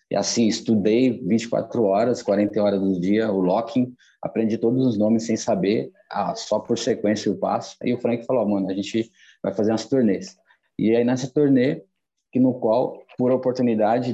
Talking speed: 185 wpm